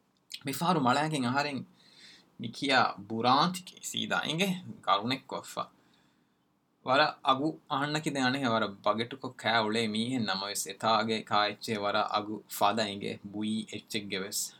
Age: 20-39